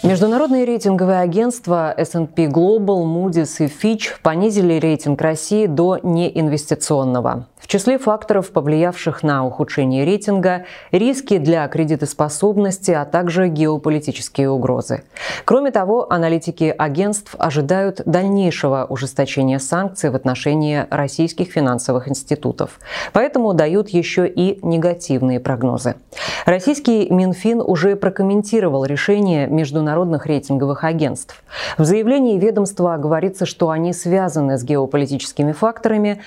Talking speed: 105 wpm